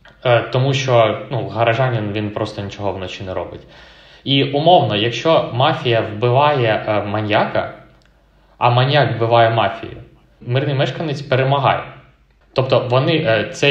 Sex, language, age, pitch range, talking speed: male, Ukrainian, 20-39, 115-145 Hz, 115 wpm